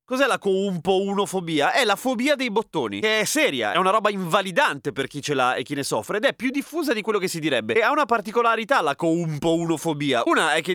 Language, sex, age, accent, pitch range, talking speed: Italian, male, 30-49, native, 150-215 Hz, 250 wpm